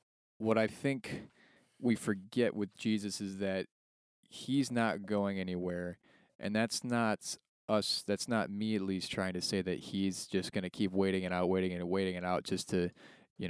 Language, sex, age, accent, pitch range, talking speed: English, male, 20-39, American, 90-110 Hz, 185 wpm